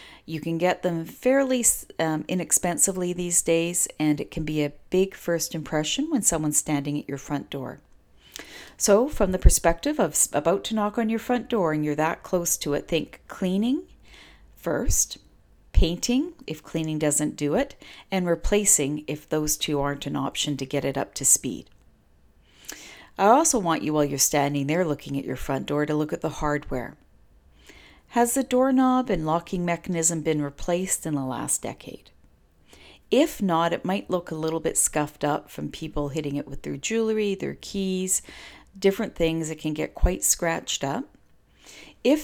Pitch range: 150-190 Hz